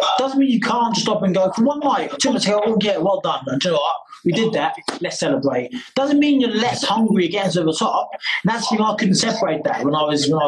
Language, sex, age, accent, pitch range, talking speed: English, male, 20-39, British, 155-220 Hz, 280 wpm